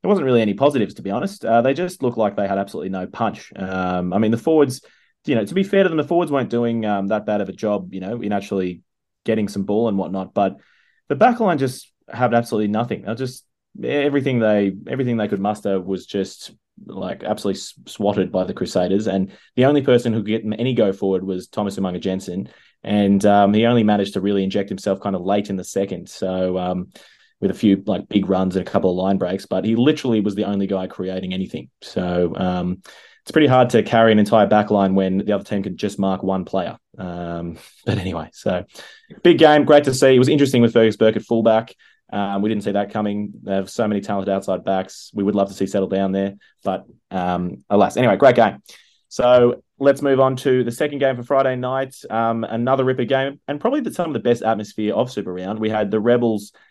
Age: 20-39